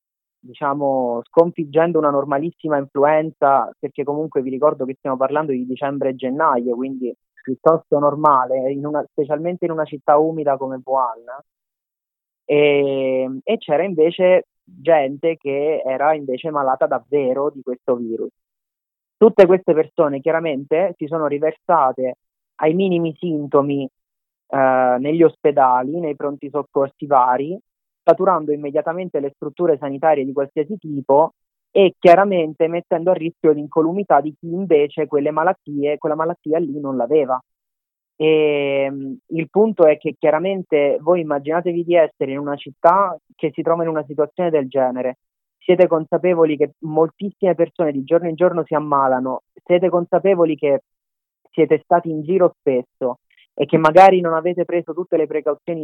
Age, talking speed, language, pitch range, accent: 30-49, 140 wpm, Italian, 140-165 Hz, native